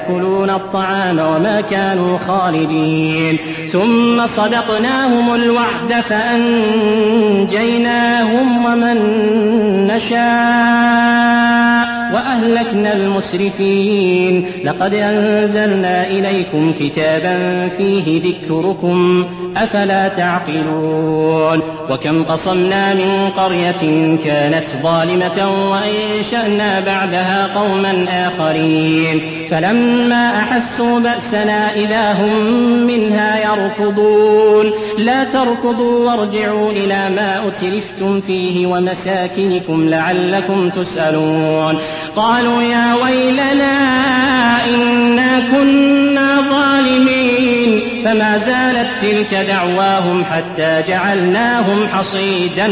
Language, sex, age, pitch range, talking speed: Arabic, male, 30-49, 180-235 Hz, 70 wpm